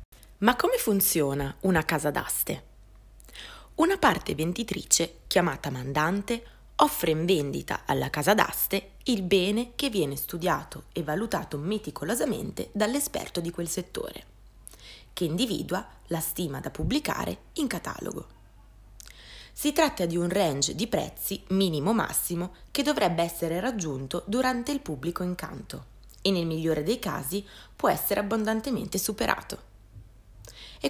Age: 20-39